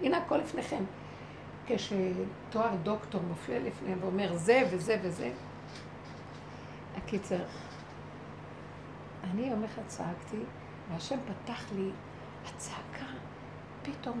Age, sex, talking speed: 60-79, female, 90 wpm